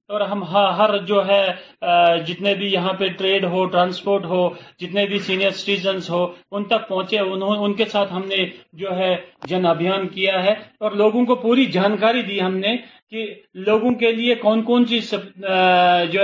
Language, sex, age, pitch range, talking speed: Urdu, male, 40-59, 190-215 Hz, 175 wpm